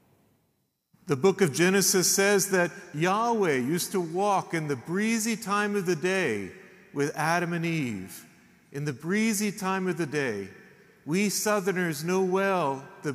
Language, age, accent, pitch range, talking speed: English, 40-59, American, 165-200 Hz, 150 wpm